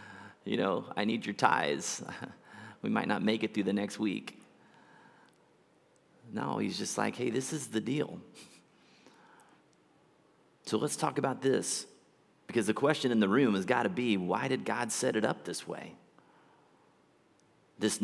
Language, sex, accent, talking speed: English, male, American, 160 wpm